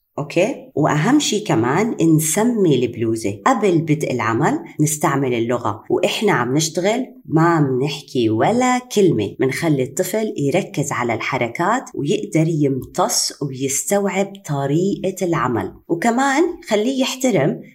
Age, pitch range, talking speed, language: 30-49, 140-195 Hz, 105 wpm, Arabic